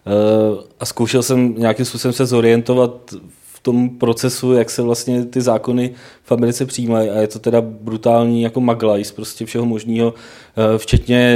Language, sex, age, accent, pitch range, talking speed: Czech, male, 30-49, native, 110-120 Hz, 165 wpm